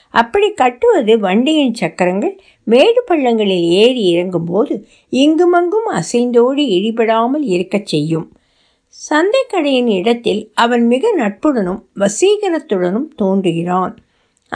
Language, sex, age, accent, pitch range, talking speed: Tamil, female, 60-79, native, 195-295 Hz, 85 wpm